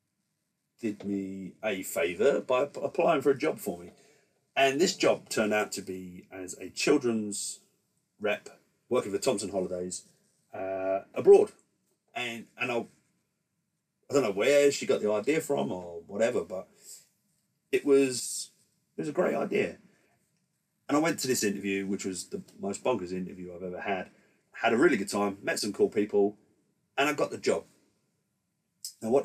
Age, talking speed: 40-59, 165 wpm